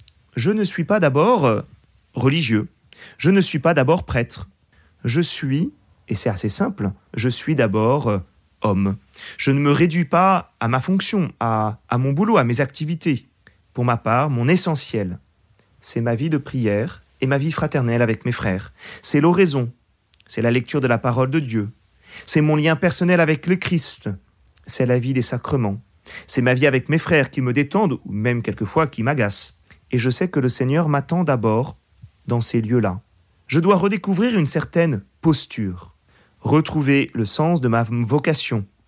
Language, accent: French, French